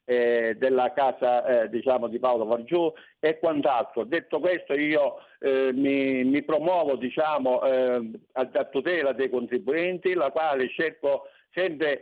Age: 60-79